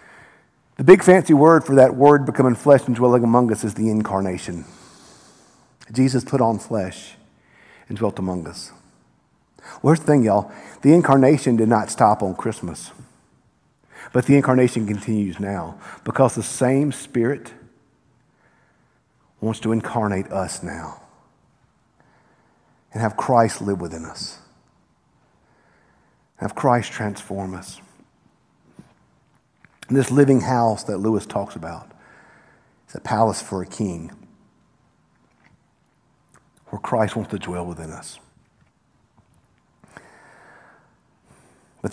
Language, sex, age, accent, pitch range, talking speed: English, male, 50-69, American, 105-130 Hz, 115 wpm